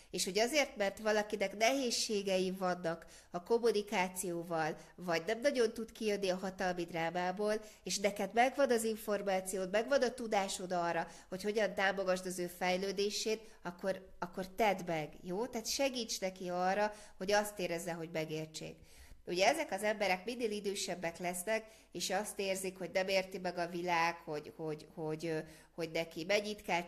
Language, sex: Hungarian, female